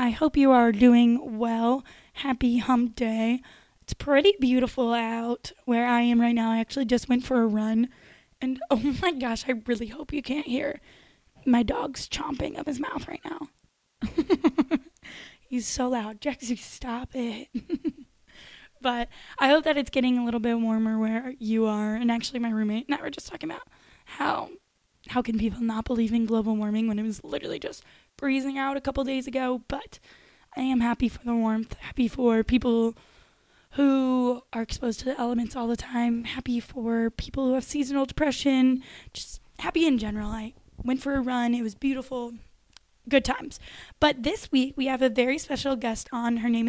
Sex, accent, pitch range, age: female, American, 235-270 Hz, 10-29